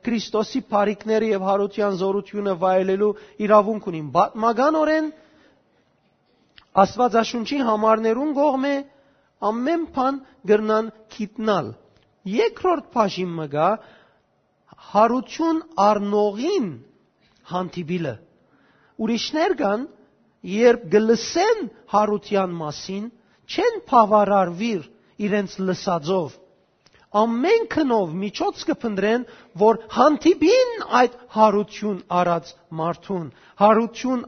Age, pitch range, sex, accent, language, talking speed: 40-59, 200-255 Hz, male, Turkish, English, 80 wpm